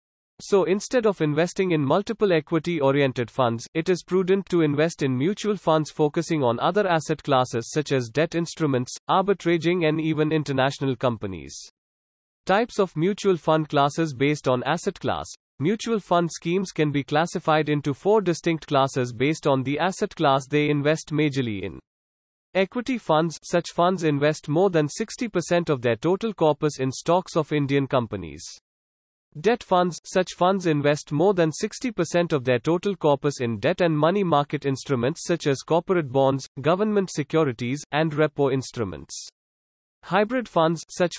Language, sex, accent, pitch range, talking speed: English, male, Indian, 135-175 Hz, 155 wpm